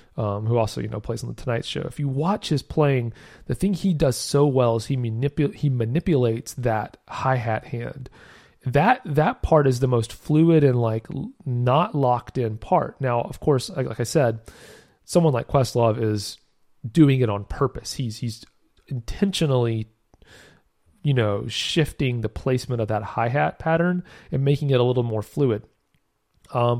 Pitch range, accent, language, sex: 115-150 Hz, American, English, male